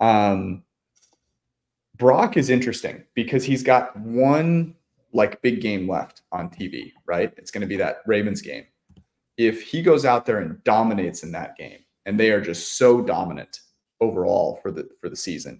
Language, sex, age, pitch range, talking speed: English, male, 30-49, 105-130 Hz, 170 wpm